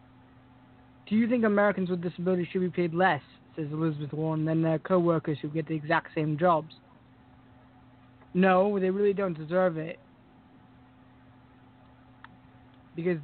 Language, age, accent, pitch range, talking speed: English, 20-39, American, 125-185 Hz, 130 wpm